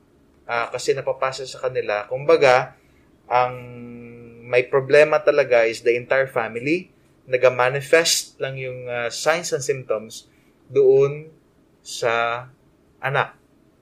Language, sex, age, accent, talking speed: English, male, 20-39, Filipino, 105 wpm